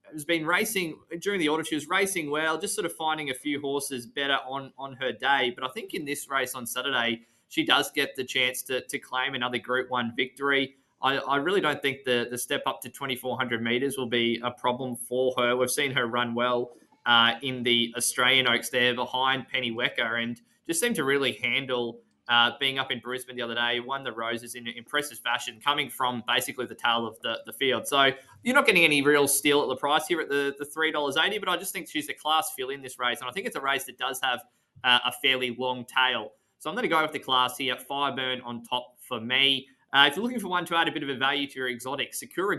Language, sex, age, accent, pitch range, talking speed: English, male, 20-39, Australian, 125-140 Hz, 240 wpm